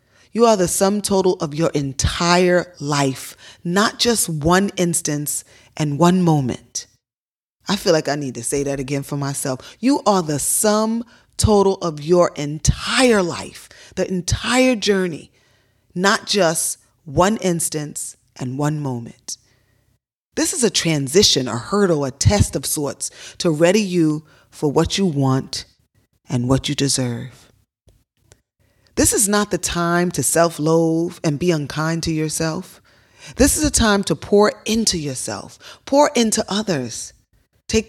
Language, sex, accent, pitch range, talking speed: English, female, American, 140-190 Hz, 145 wpm